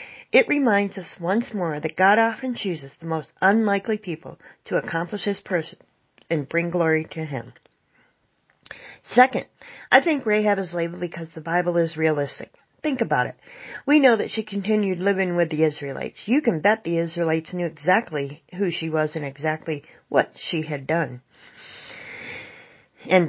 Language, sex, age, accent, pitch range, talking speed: English, female, 40-59, American, 160-210 Hz, 160 wpm